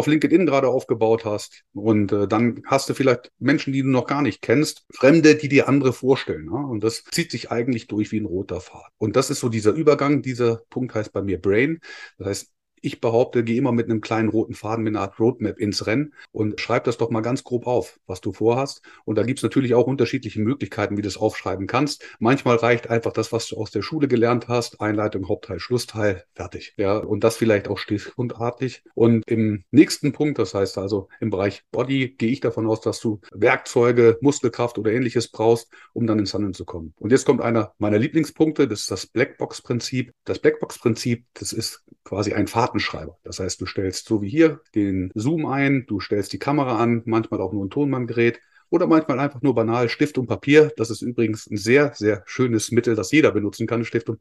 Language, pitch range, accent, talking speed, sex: German, 110-135 Hz, German, 215 wpm, male